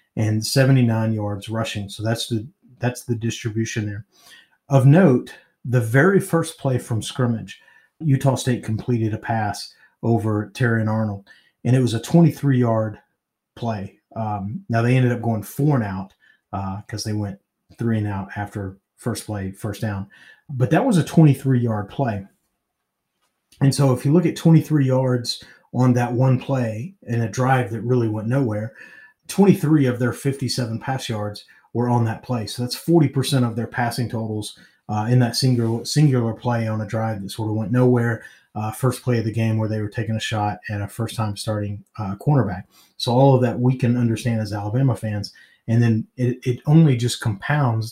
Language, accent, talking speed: English, American, 185 wpm